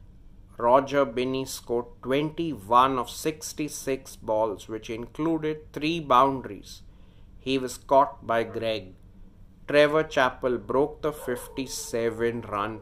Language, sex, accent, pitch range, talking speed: English, male, Indian, 105-135 Hz, 100 wpm